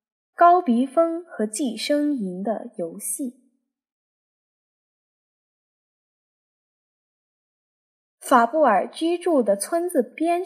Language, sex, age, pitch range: Chinese, female, 10-29, 215-285 Hz